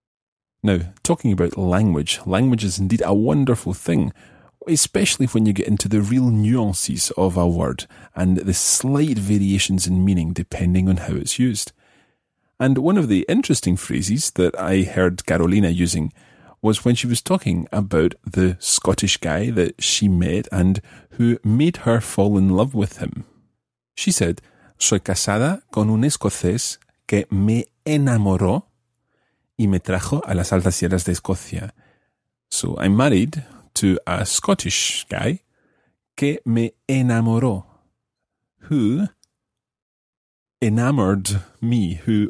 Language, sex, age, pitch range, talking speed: English, male, 30-49, 95-120 Hz, 140 wpm